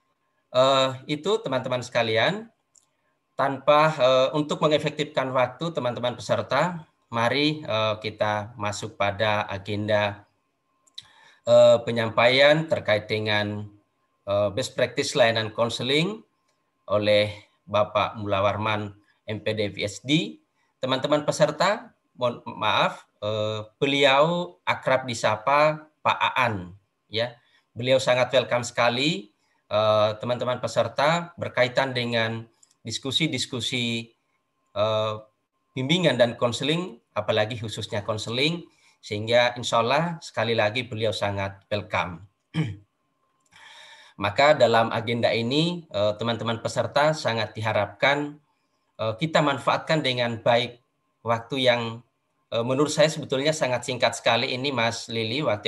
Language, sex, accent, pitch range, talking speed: Indonesian, male, native, 110-145 Hz, 100 wpm